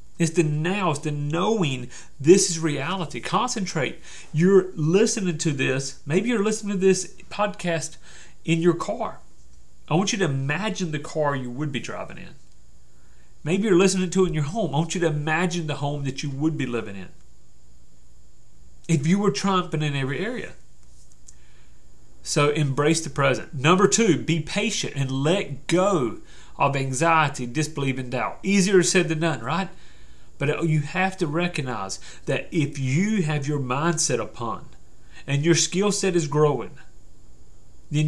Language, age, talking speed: English, 40-59, 160 wpm